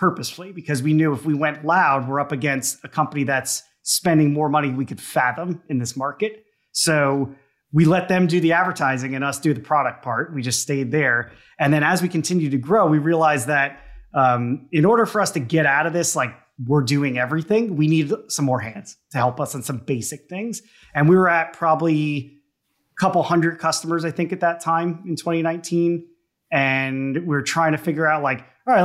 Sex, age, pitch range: male, 30-49, 135-170 Hz